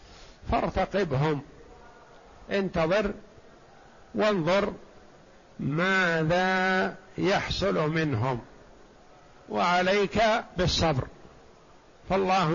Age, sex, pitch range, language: 60-79, male, 170-200 Hz, Arabic